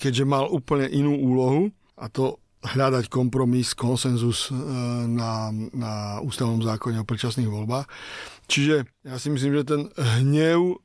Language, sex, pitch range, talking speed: Slovak, male, 120-145 Hz, 135 wpm